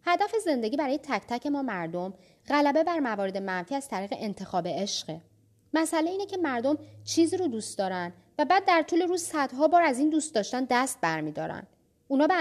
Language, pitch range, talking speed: Persian, 205-300 Hz, 195 wpm